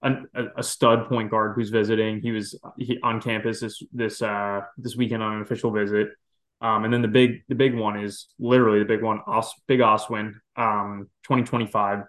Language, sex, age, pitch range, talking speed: English, male, 20-39, 105-125 Hz, 205 wpm